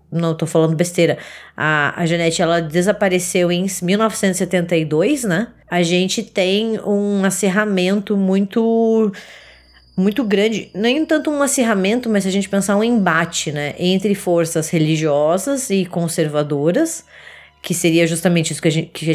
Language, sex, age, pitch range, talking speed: Portuguese, female, 20-39, 165-210 Hz, 145 wpm